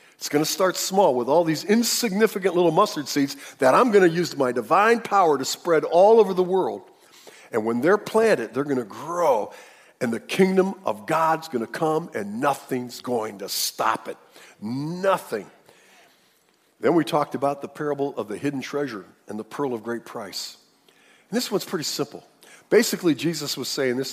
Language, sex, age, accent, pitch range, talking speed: English, male, 50-69, American, 140-205 Hz, 185 wpm